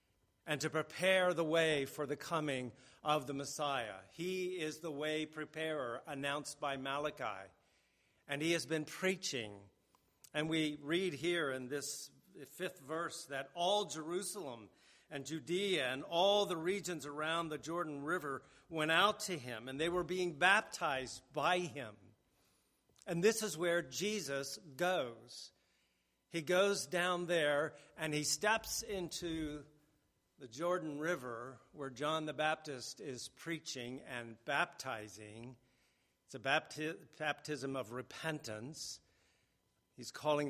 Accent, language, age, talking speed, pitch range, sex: American, English, 50-69, 130 wpm, 130-165 Hz, male